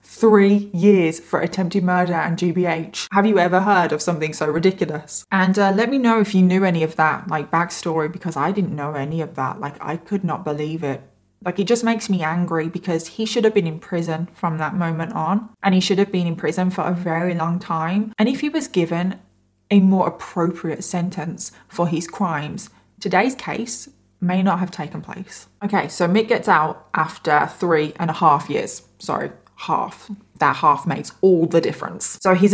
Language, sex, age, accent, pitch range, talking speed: English, female, 20-39, British, 165-200 Hz, 205 wpm